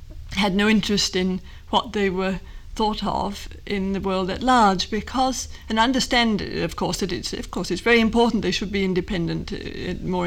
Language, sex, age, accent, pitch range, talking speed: English, female, 50-69, British, 185-235 Hz, 185 wpm